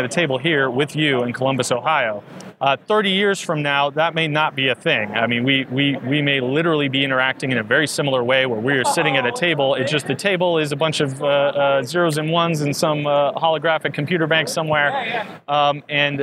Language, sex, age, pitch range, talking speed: English, male, 30-49, 130-160 Hz, 230 wpm